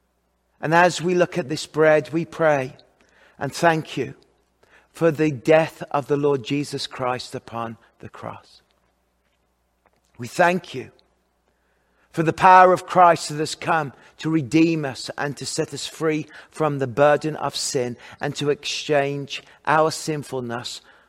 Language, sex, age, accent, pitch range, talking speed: English, male, 50-69, British, 115-155 Hz, 150 wpm